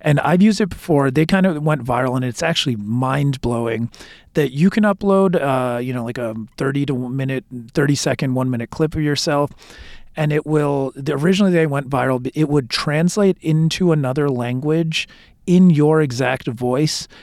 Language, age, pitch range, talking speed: English, 40-59, 130-160 Hz, 175 wpm